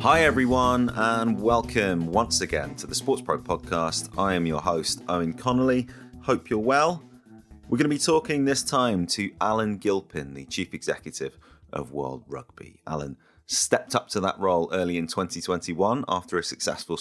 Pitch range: 80-115 Hz